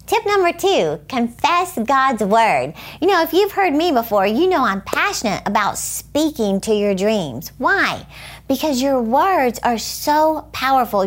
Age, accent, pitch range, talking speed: 50-69, American, 210-265 Hz, 155 wpm